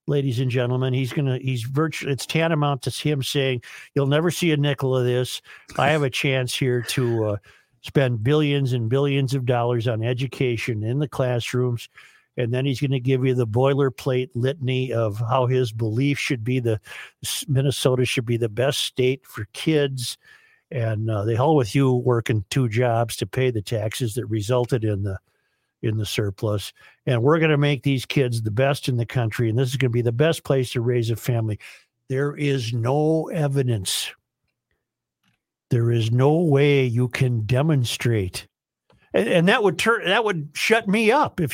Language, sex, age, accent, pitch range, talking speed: English, male, 50-69, American, 120-150 Hz, 190 wpm